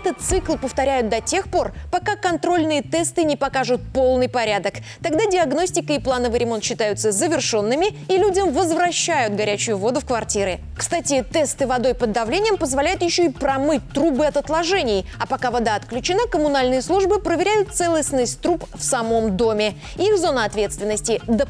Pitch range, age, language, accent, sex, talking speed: 245-330 Hz, 20-39, Russian, native, female, 155 wpm